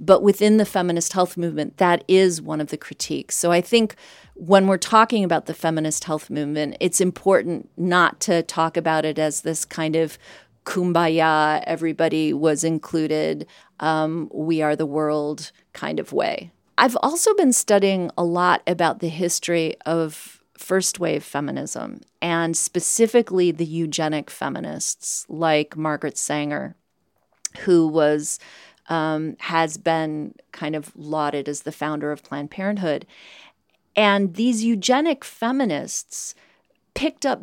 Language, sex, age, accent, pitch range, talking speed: English, female, 40-59, American, 160-195 Hz, 140 wpm